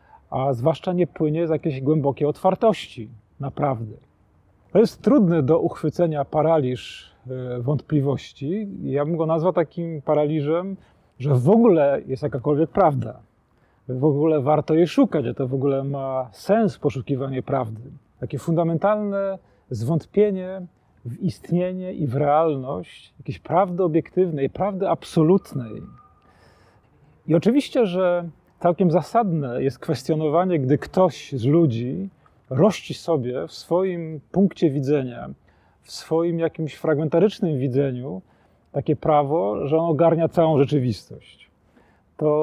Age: 40-59